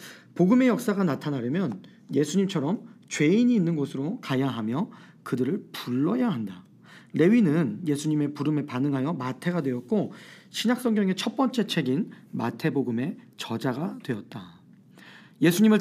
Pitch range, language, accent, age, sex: 130-200 Hz, Korean, native, 40-59, male